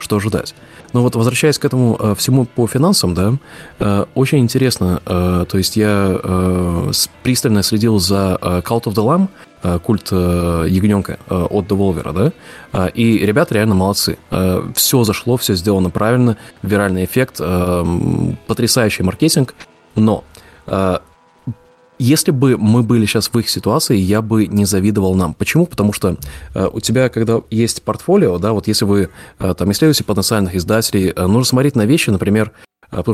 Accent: native